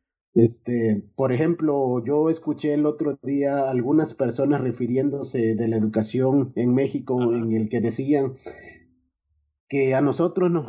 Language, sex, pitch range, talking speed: Spanish, male, 115-150 Hz, 135 wpm